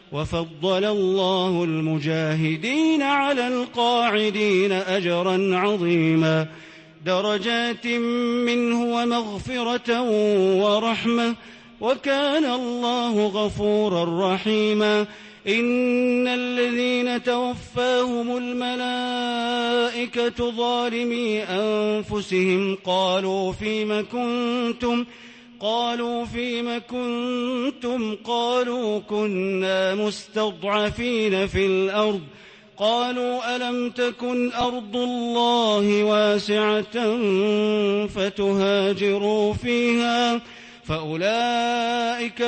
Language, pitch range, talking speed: English, 200-240 Hz, 60 wpm